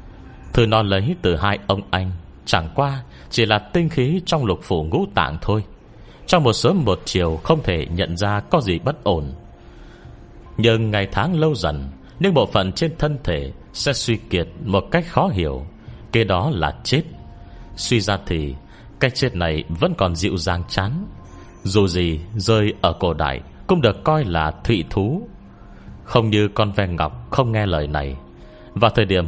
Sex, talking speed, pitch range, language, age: male, 180 wpm, 85-125 Hz, Vietnamese, 30-49